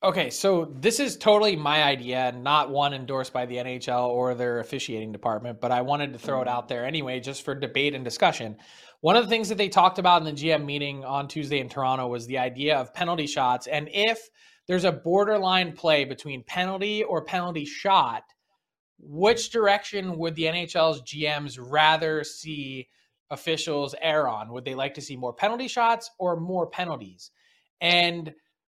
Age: 20-39